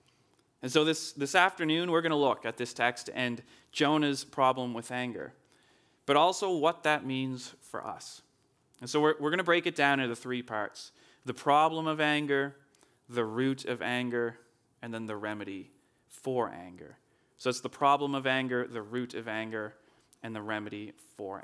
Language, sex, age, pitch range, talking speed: English, male, 30-49, 115-145 Hz, 180 wpm